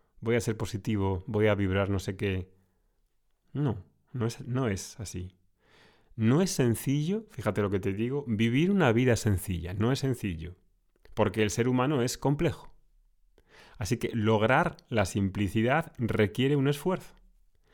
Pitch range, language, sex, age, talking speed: 100-130 Hz, Spanish, male, 30-49, 150 wpm